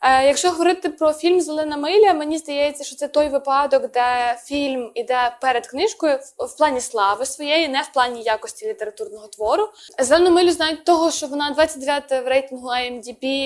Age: 20-39